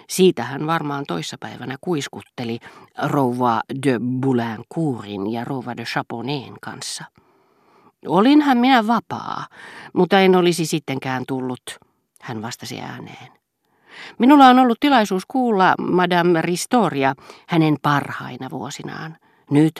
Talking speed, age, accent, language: 105 wpm, 40-59, native, Finnish